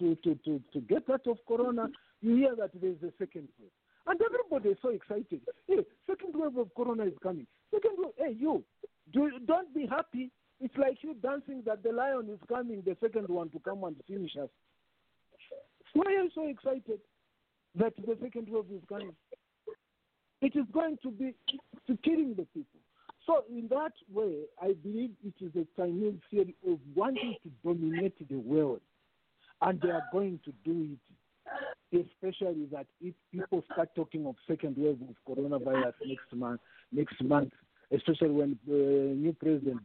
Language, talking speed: English, 175 wpm